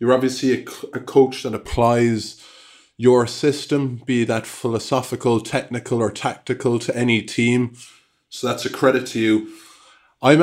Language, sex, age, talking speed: English, male, 20-39, 145 wpm